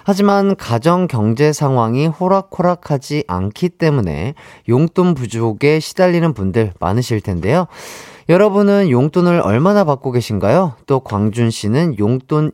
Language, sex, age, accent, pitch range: Korean, male, 30-49, native, 115-175 Hz